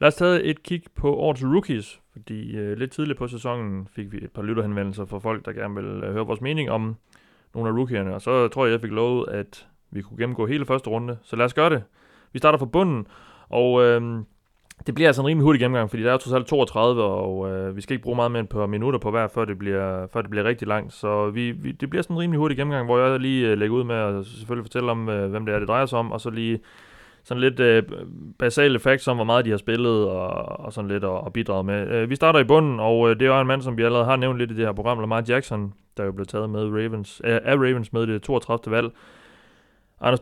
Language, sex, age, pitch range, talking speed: Danish, male, 30-49, 105-130 Hz, 270 wpm